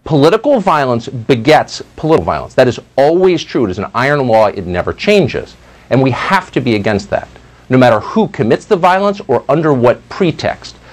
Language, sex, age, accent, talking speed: English, male, 50-69, American, 185 wpm